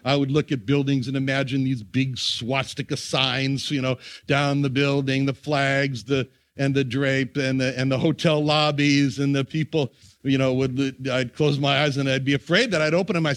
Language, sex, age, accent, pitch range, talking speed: English, male, 60-79, American, 125-170 Hz, 210 wpm